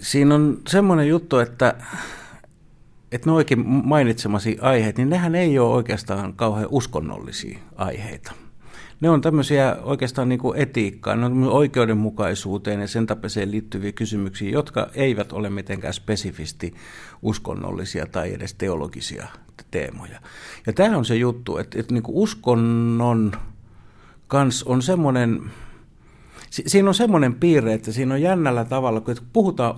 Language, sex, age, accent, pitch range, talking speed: Finnish, male, 60-79, native, 100-140 Hz, 130 wpm